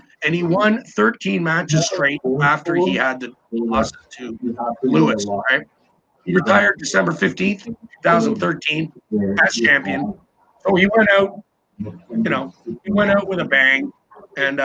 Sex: male